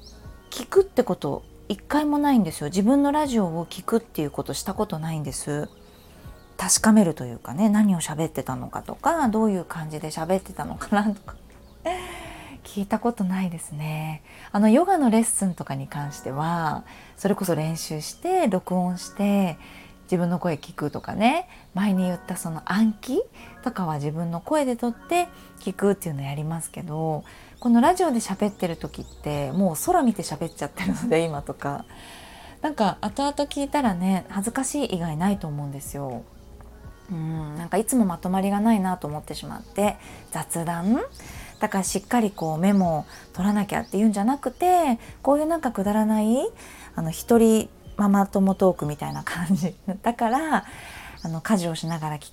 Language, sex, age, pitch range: Japanese, female, 20-39, 160-220 Hz